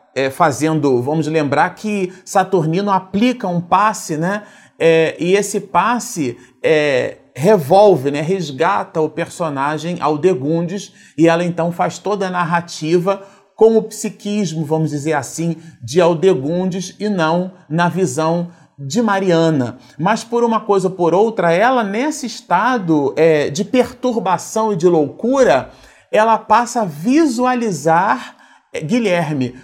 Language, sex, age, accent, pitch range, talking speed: Portuguese, male, 40-59, Brazilian, 155-205 Hz, 130 wpm